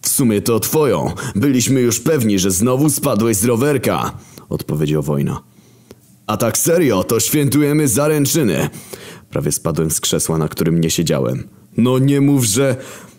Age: 30-49